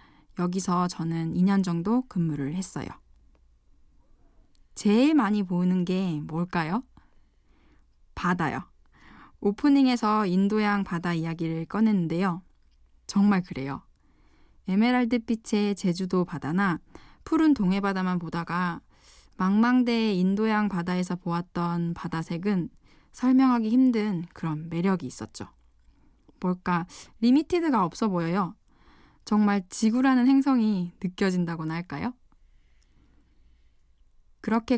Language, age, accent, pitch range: Korean, 20-39, native, 170-220 Hz